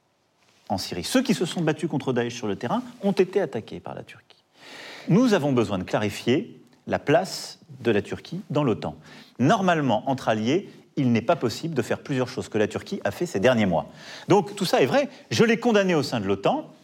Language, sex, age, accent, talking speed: French, male, 40-59, French, 215 wpm